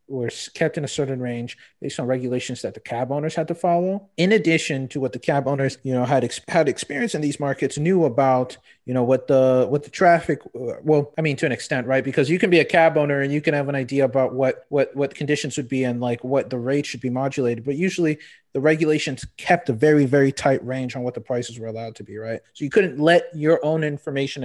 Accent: American